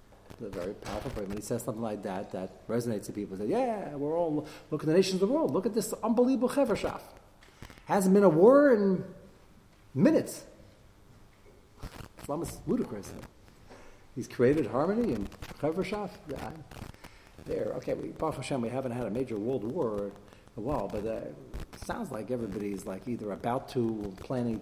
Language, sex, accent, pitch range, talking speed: English, male, American, 100-140 Hz, 165 wpm